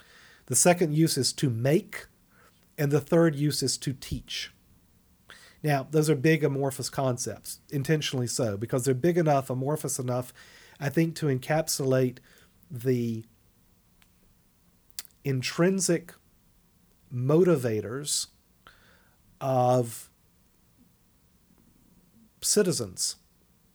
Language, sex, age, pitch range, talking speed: English, male, 40-59, 125-160 Hz, 90 wpm